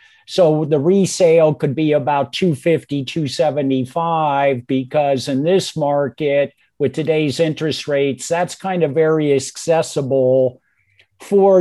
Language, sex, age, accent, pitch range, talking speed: English, male, 50-69, American, 135-170 Hz, 115 wpm